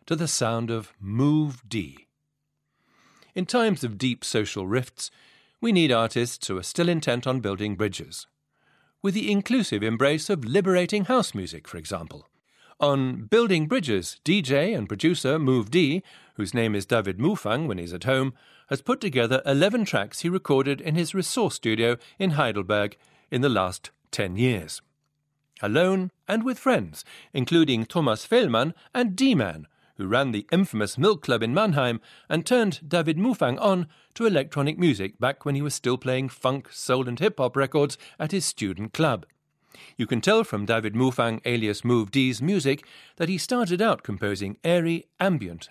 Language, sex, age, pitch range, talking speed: English, male, 50-69, 115-175 Hz, 165 wpm